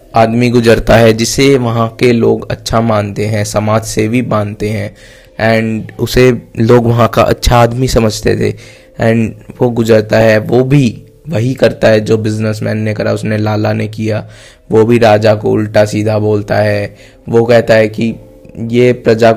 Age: 20-39